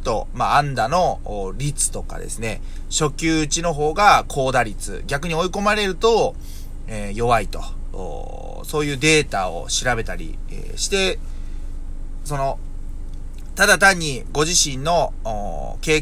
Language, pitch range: Japanese, 95-145 Hz